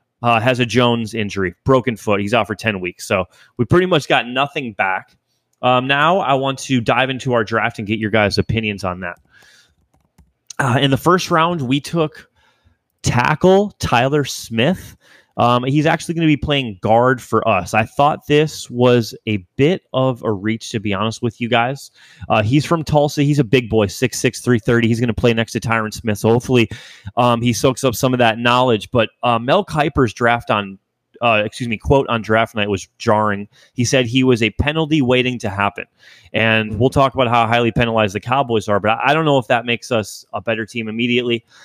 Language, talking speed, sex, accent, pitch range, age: English, 205 wpm, male, American, 110-135 Hz, 20-39